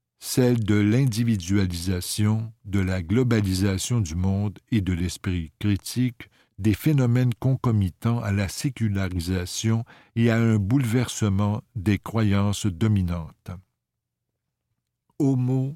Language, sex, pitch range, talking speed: French, male, 95-120 Hz, 100 wpm